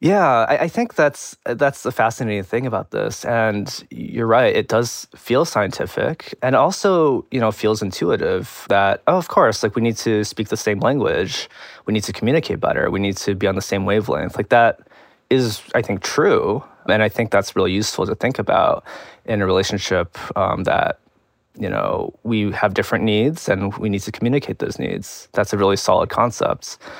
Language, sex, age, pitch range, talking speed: English, male, 20-39, 100-115 Hz, 190 wpm